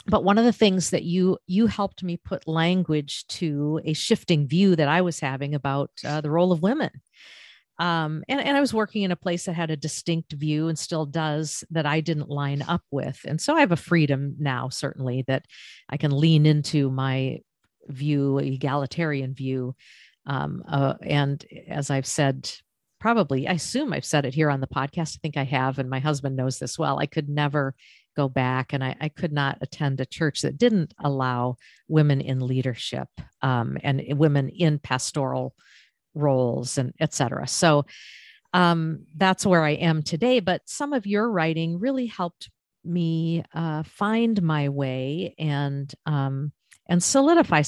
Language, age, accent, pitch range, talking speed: English, 50-69, American, 140-180 Hz, 180 wpm